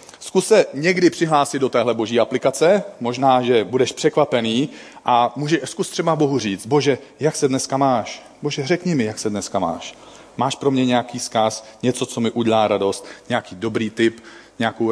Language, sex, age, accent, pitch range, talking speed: Czech, male, 40-59, native, 115-145 Hz, 175 wpm